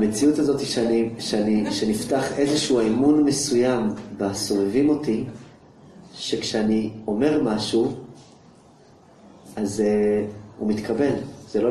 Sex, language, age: male, English, 30-49